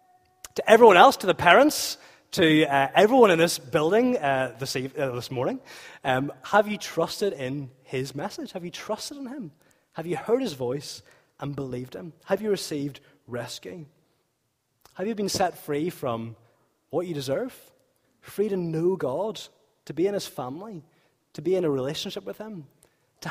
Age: 30-49